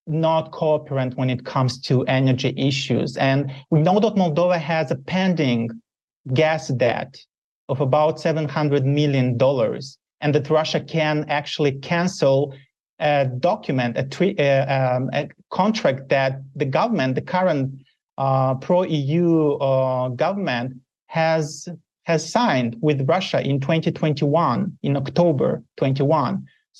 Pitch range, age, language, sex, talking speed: 135-175 Hz, 30-49, English, male, 125 wpm